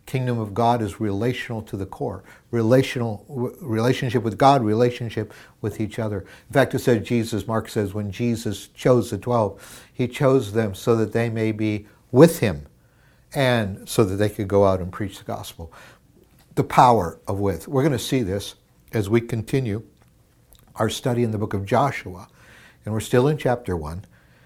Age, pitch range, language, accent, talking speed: 60-79, 100-125 Hz, English, American, 180 wpm